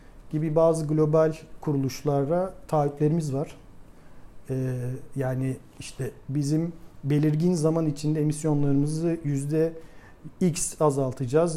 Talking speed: 90 wpm